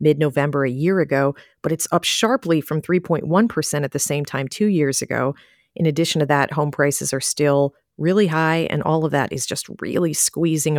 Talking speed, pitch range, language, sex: 195 wpm, 145-185 Hz, English, female